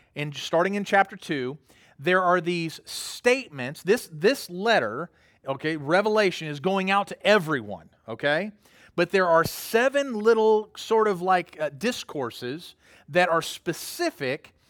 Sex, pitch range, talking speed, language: male, 160-215 Hz, 135 wpm, English